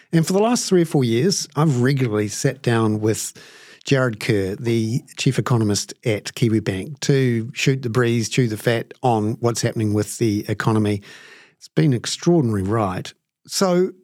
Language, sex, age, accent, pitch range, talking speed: English, male, 50-69, Australian, 110-150 Hz, 170 wpm